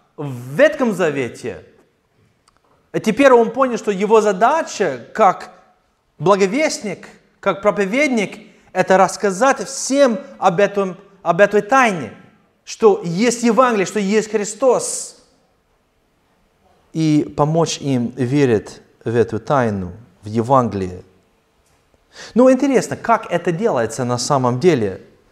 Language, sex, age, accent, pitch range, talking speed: Ukrainian, male, 30-49, native, 130-210 Hz, 105 wpm